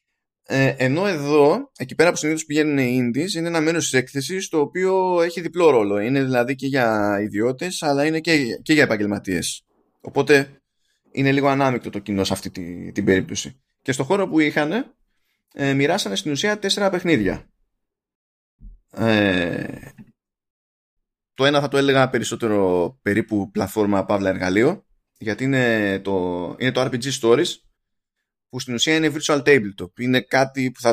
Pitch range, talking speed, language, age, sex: 110-155 Hz, 150 wpm, Greek, 20-39, male